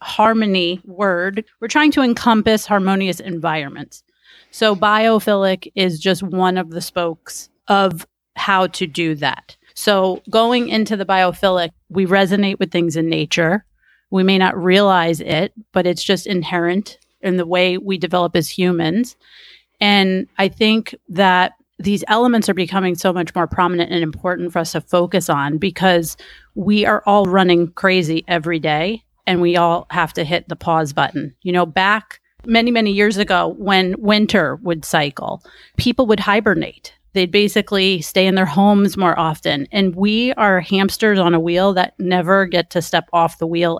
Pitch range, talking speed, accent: 170-200 Hz, 165 wpm, American